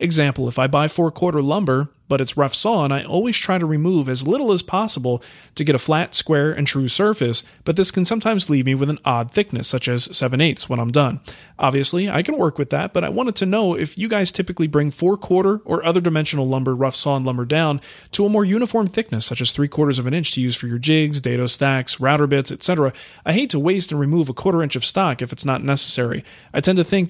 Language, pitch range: English, 135-175 Hz